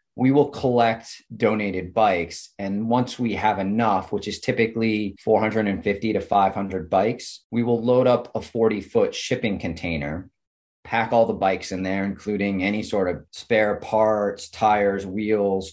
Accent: American